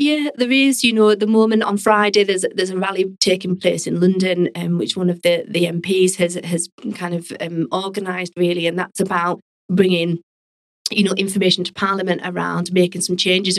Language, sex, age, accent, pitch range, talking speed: English, female, 30-49, British, 175-200 Hz, 205 wpm